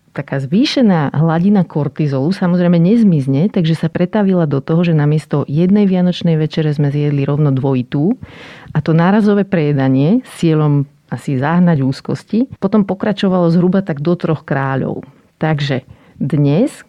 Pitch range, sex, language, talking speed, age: 150-185 Hz, female, Slovak, 135 wpm, 40-59